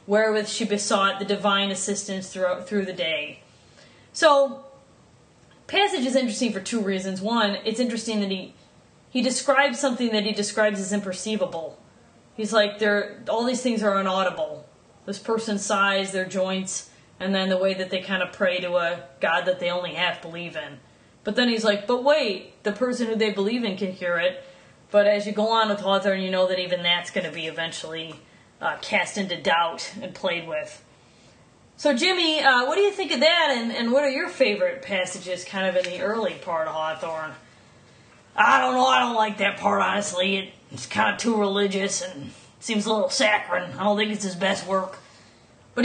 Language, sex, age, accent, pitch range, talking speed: English, female, 30-49, American, 180-225 Hz, 195 wpm